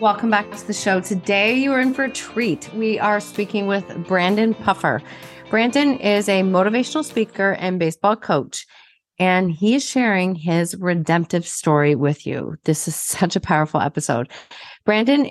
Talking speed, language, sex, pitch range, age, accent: 165 wpm, English, female, 175-215 Hz, 30-49, American